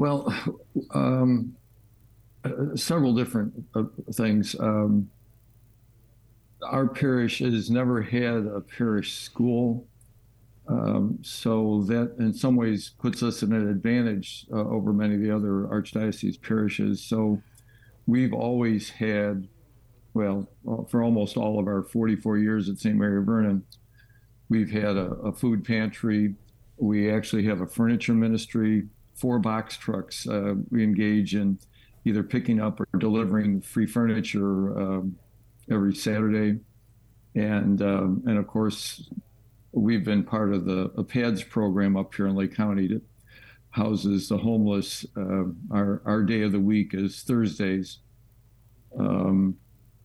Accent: American